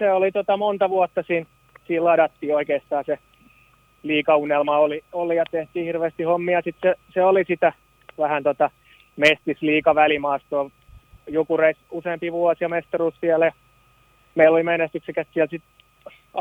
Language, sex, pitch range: Finnish, male, 145-180 Hz